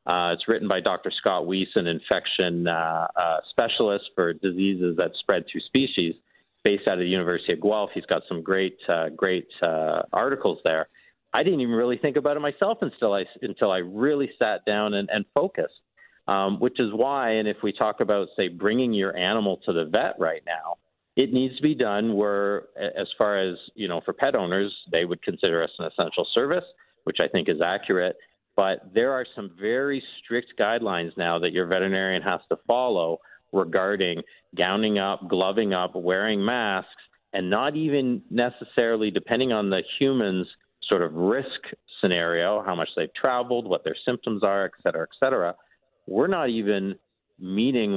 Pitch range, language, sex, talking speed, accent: 90-125 Hz, English, male, 180 wpm, American